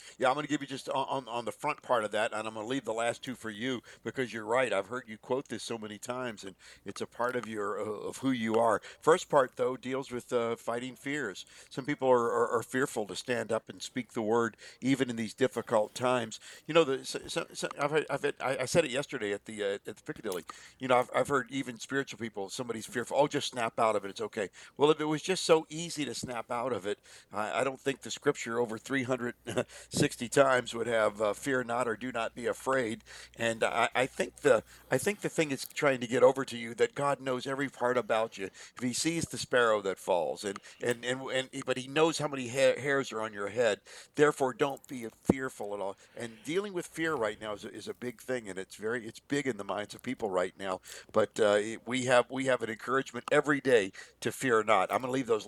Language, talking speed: English, 255 wpm